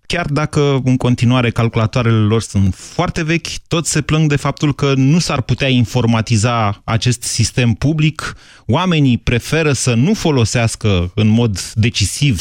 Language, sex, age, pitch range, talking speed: Romanian, male, 30-49, 110-145 Hz, 145 wpm